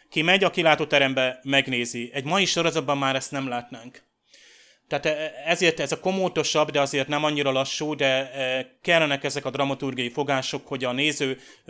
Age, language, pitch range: 30-49, Hungarian, 130-150 Hz